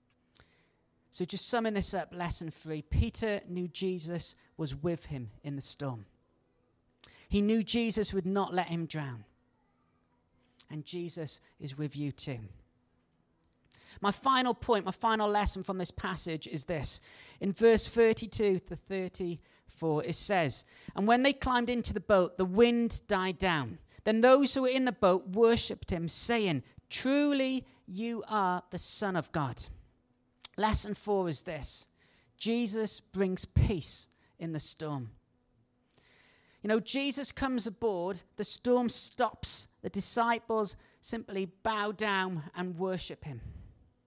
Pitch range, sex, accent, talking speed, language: 150-220 Hz, male, British, 140 wpm, English